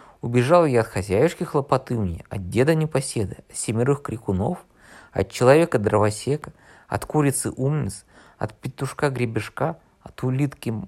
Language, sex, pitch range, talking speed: Russian, male, 110-160 Hz, 105 wpm